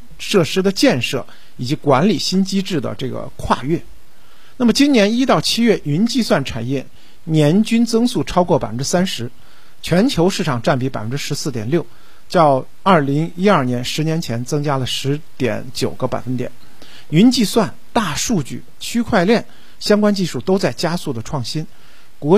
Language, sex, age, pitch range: Chinese, male, 50-69, 130-195 Hz